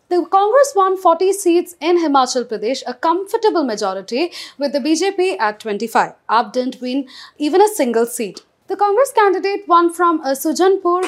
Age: 30-49